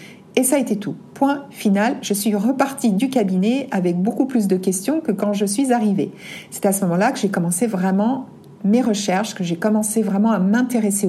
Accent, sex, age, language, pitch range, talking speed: French, female, 60-79, French, 195-245 Hz, 205 wpm